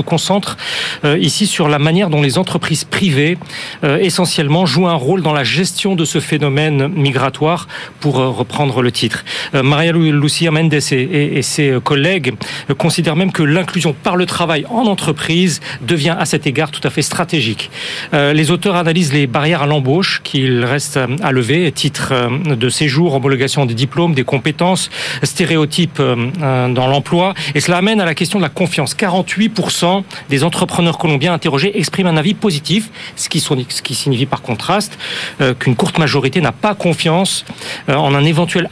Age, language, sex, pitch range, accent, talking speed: 40-59, French, male, 140-175 Hz, French, 160 wpm